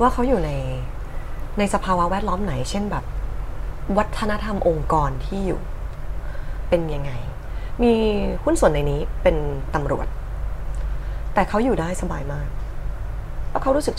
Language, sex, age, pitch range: Thai, female, 20-39, 130-205 Hz